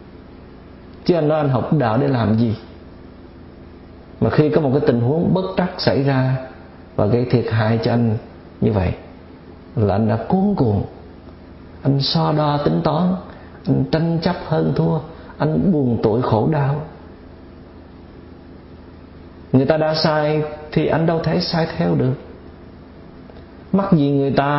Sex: male